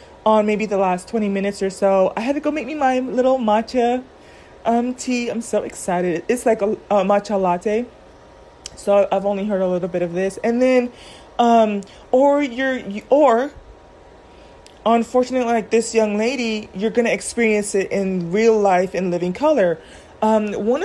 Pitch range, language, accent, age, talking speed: 200-235 Hz, English, American, 30-49, 175 wpm